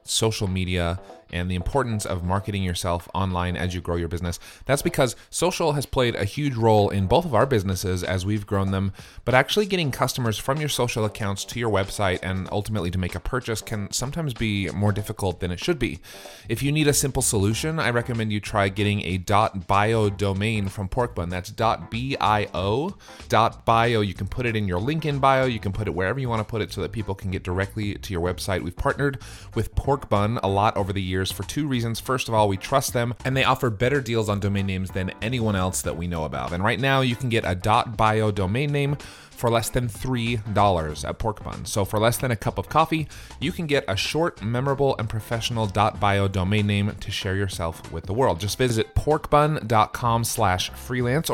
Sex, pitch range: male, 95-125 Hz